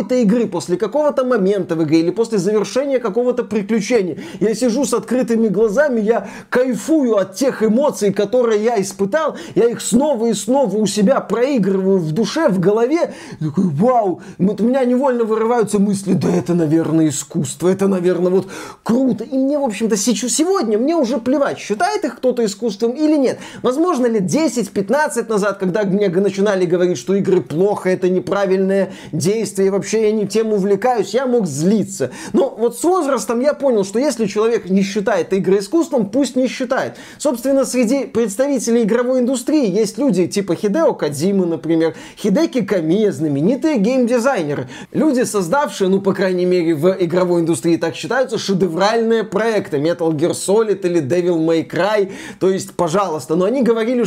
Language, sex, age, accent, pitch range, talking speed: Russian, male, 20-39, native, 190-250 Hz, 165 wpm